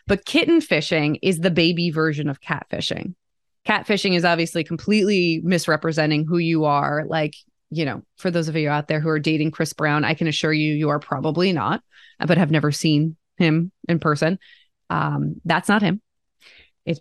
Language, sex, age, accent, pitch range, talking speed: English, female, 20-39, American, 155-210 Hz, 180 wpm